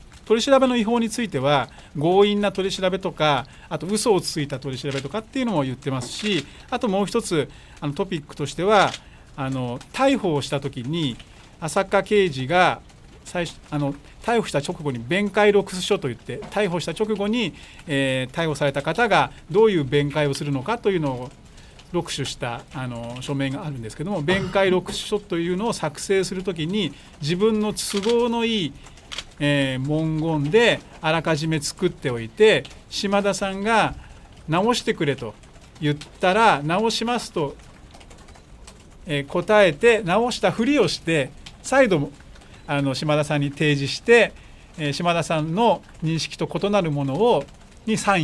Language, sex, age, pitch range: Japanese, male, 40-59, 140-200 Hz